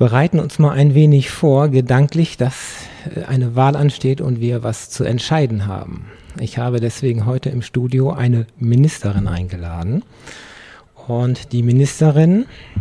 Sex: male